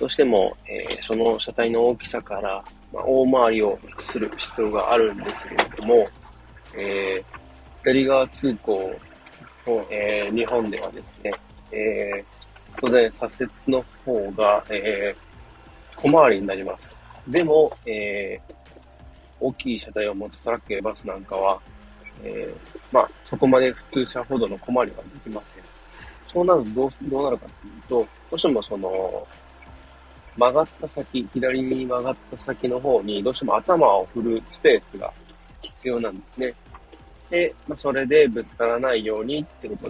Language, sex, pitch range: Japanese, male, 100-130 Hz